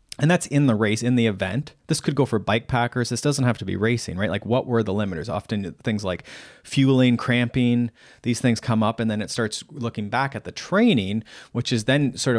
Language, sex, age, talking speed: English, male, 30-49, 235 wpm